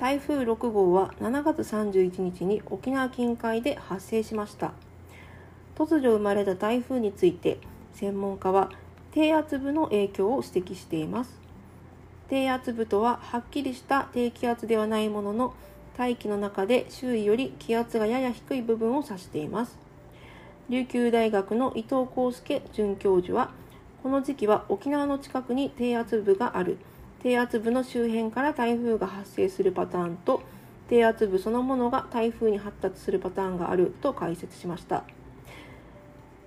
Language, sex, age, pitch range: Japanese, female, 40-59, 200-255 Hz